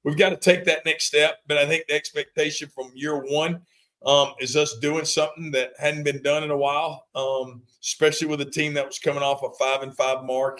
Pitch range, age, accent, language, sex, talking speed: 130-150 Hz, 40-59, American, English, male, 225 wpm